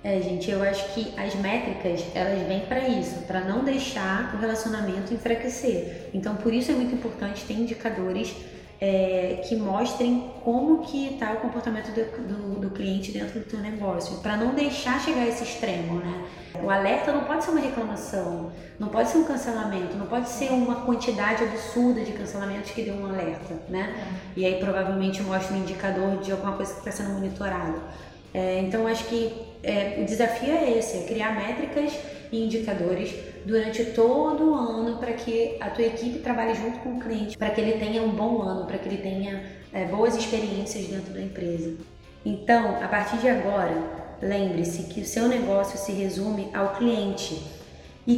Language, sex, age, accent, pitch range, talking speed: Portuguese, female, 20-39, Brazilian, 195-235 Hz, 175 wpm